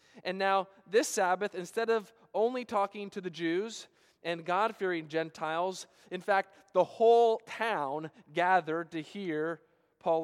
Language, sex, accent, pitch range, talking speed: English, male, American, 160-195 Hz, 140 wpm